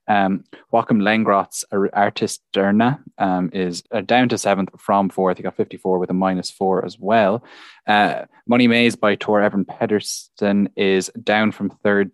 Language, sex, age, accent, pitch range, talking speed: English, male, 10-29, Irish, 95-110 Hz, 165 wpm